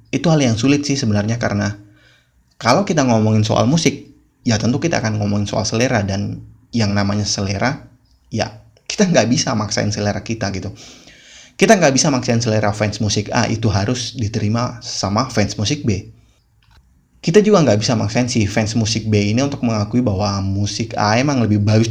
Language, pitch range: Indonesian, 105-120 Hz